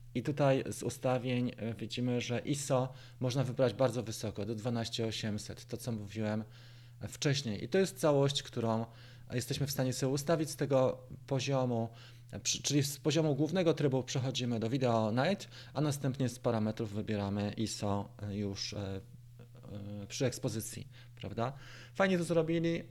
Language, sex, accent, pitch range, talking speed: Polish, male, native, 115-140 Hz, 135 wpm